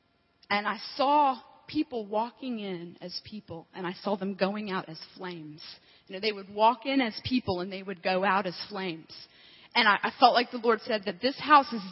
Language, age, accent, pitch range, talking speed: English, 30-49, American, 205-270 Hz, 215 wpm